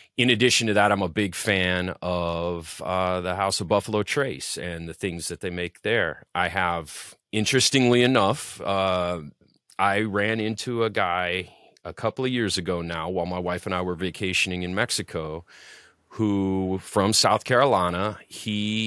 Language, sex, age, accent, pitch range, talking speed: English, male, 30-49, American, 90-105 Hz, 165 wpm